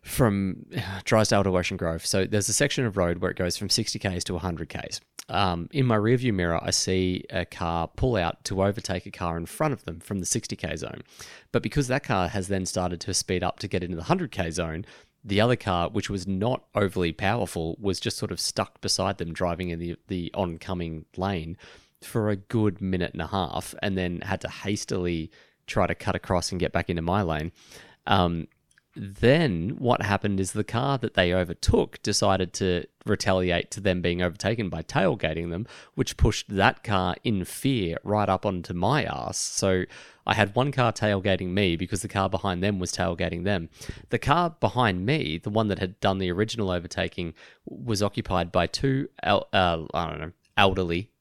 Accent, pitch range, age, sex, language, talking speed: Australian, 90-105 Hz, 30-49, male, English, 195 wpm